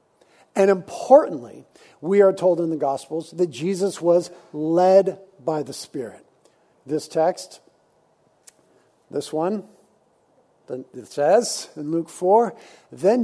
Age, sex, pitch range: 50-69, male, 175-240 Hz